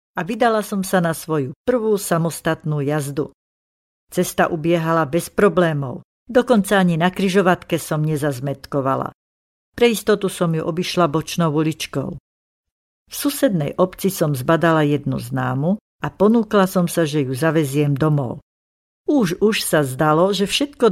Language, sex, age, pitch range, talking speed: Slovak, female, 60-79, 150-180 Hz, 135 wpm